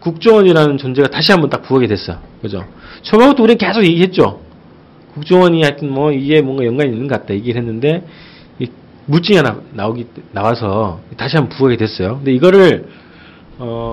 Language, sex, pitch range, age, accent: Korean, male, 120-185 Hz, 40-59, native